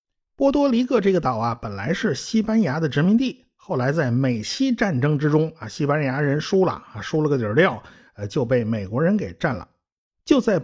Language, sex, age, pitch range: Chinese, male, 50-69, 135-225 Hz